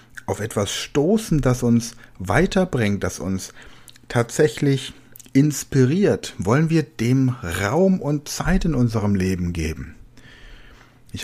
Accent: German